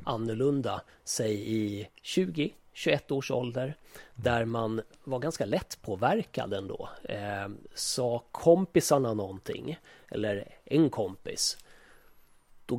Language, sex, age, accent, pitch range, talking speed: Swedish, male, 30-49, native, 110-140 Hz, 105 wpm